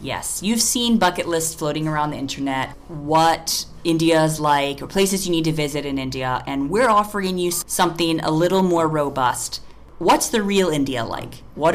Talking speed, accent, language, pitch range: 185 wpm, American, English, 135-165 Hz